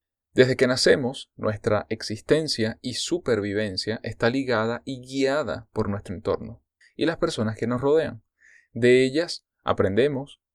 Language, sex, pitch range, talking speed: Spanish, male, 105-130 Hz, 130 wpm